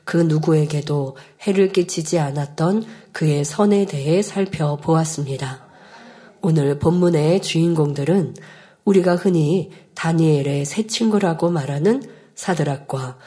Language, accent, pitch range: Korean, native, 150-190 Hz